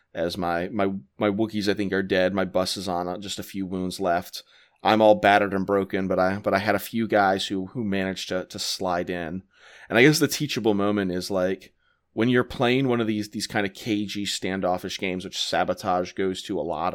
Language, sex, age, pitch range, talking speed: English, male, 30-49, 90-105 Hz, 230 wpm